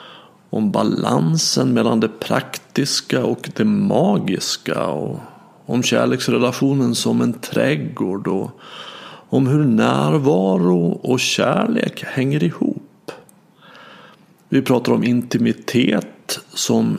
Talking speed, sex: 90 wpm, male